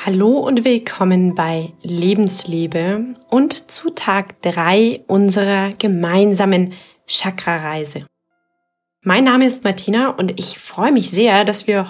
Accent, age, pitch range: German, 20-39, 175-230 Hz